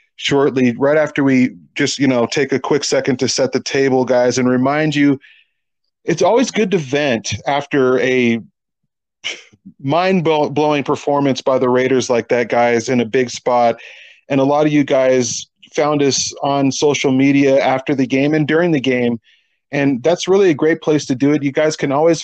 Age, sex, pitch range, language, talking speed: 40-59, male, 130-155 Hz, English, 190 wpm